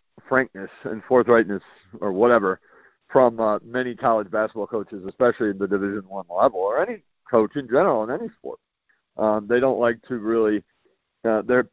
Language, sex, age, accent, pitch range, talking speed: English, male, 40-59, American, 105-135 Hz, 165 wpm